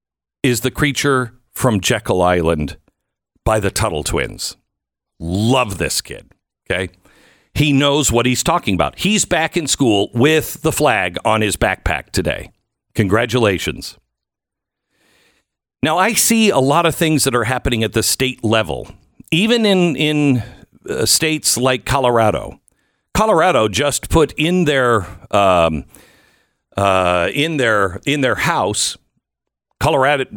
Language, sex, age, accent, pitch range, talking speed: English, male, 50-69, American, 110-155 Hz, 130 wpm